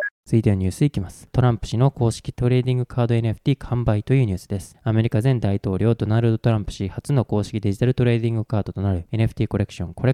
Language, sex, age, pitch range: Japanese, male, 20-39, 100-125 Hz